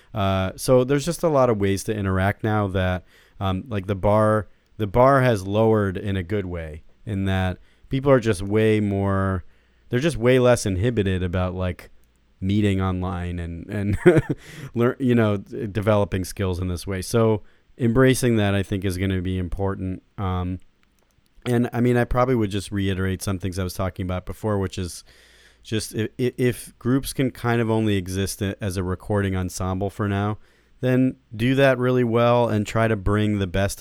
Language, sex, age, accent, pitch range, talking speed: English, male, 30-49, American, 95-115 Hz, 185 wpm